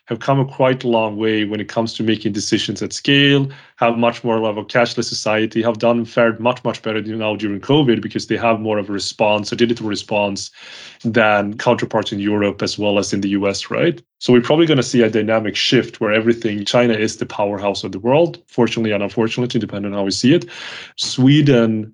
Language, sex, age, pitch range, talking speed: English, male, 30-49, 105-120 Hz, 215 wpm